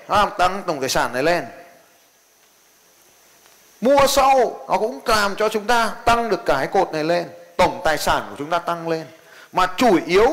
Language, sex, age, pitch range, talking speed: Vietnamese, male, 20-39, 175-230 Hz, 185 wpm